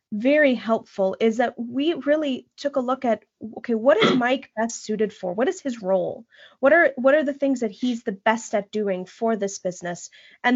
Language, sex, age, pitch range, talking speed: English, female, 20-39, 210-265 Hz, 210 wpm